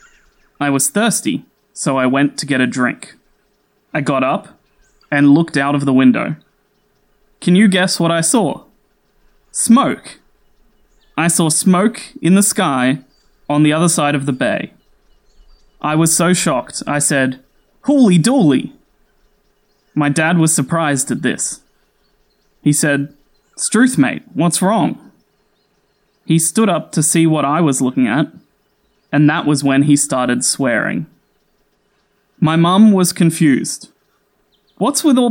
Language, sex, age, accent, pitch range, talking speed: Italian, male, 20-39, Australian, 150-220 Hz, 140 wpm